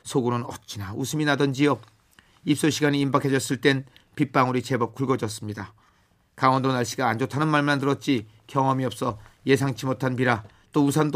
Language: Korean